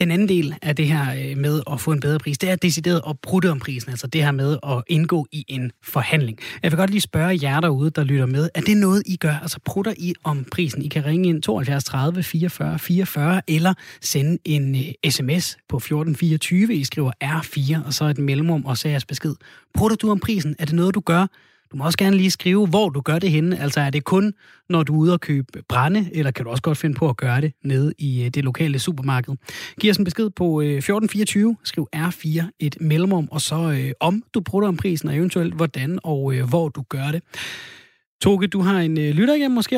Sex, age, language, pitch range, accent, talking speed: male, 30-49, Danish, 140-180 Hz, native, 235 wpm